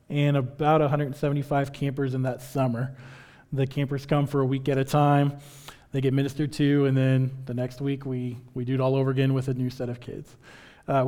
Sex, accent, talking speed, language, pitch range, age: male, American, 210 wpm, English, 135-150 Hz, 20-39